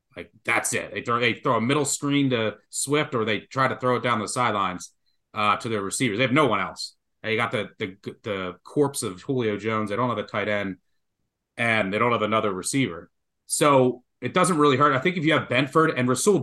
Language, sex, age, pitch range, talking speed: English, male, 30-49, 110-145 Hz, 235 wpm